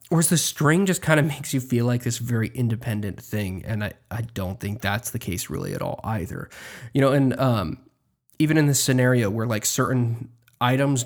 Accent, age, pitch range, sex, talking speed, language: American, 20-39, 115-135 Hz, male, 205 wpm, English